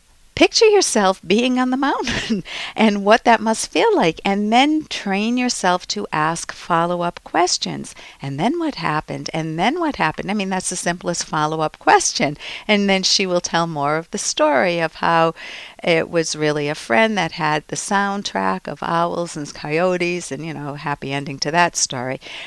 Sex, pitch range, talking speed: female, 165-220 Hz, 180 wpm